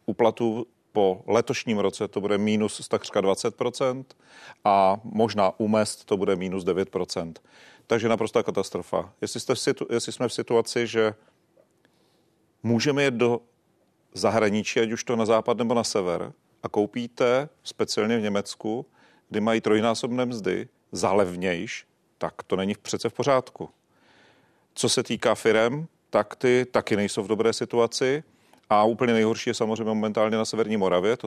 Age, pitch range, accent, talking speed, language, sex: 40-59, 100-115 Hz, native, 145 wpm, Czech, male